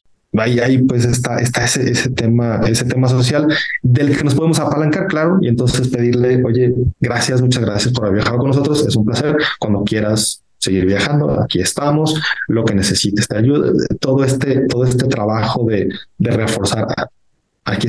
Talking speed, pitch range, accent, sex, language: 175 wpm, 110-130 Hz, Mexican, male, Spanish